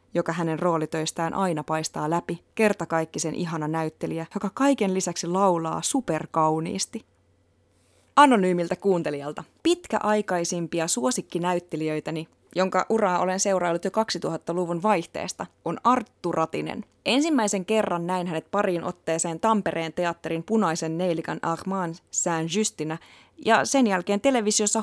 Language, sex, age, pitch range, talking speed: Finnish, female, 20-39, 165-215 Hz, 110 wpm